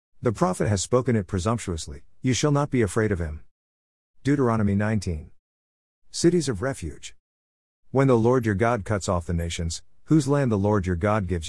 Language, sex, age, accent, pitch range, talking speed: English, male, 50-69, American, 90-115 Hz, 180 wpm